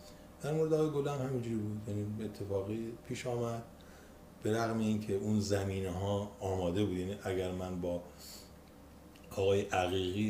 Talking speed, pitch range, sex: 130 wpm, 95-120 Hz, male